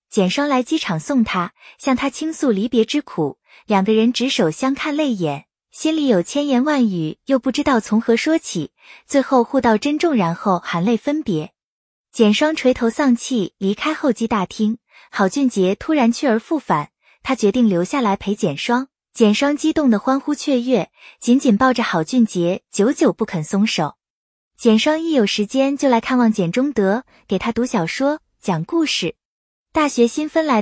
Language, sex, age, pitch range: Chinese, female, 20-39, 205-285 Hz